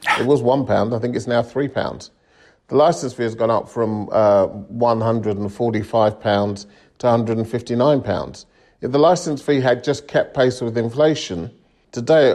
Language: English